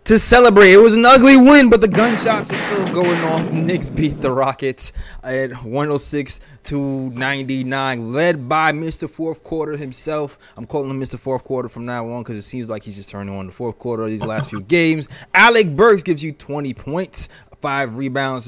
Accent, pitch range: American, 130-175 Hz